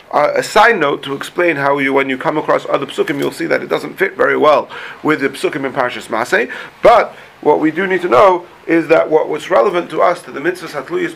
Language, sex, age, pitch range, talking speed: English, male, 40-59, 145-185 Hz, 255 wpm